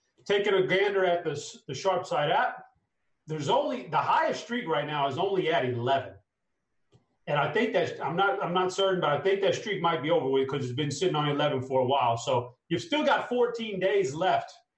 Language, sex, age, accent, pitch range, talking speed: English, male, 30-49, American, 135-195 Hz, 220 wpm